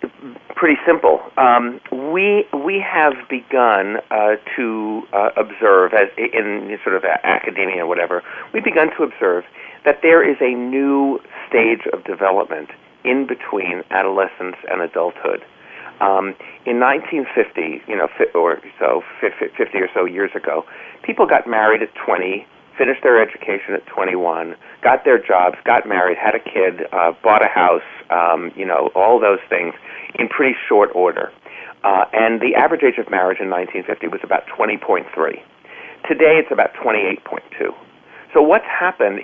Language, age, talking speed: English, 40-59, 150 wpm